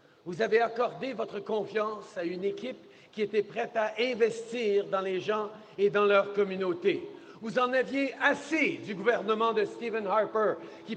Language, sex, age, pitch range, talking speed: French, male, 50-69, 200-255 Hz, 165 wpm